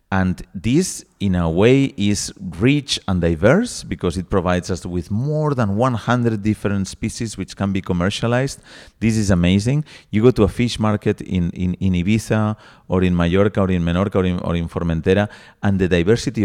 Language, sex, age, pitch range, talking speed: English, male, 40-59, 90-115 Hz, 180 wpm